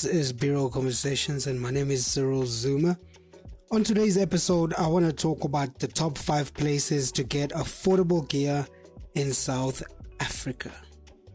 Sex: male